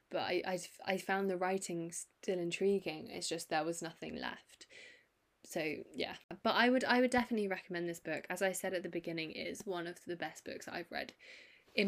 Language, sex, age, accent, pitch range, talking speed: English, female, 10-29, British, 170-215 Hz, 210 wpm